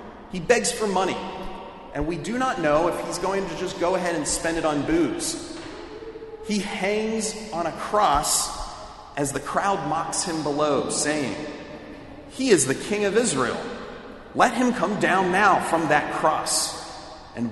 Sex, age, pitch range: male, 30-49, 160-230 Hz